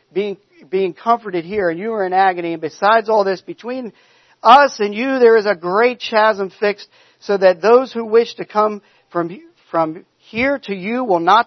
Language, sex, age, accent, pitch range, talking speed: English, male, 50-69, American, 175-245 Hz, 195 wpm